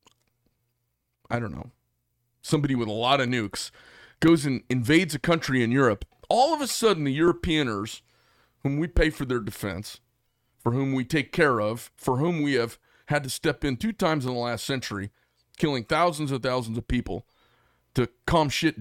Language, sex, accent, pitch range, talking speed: English, male, American, 120-155 Hz, 180 wpm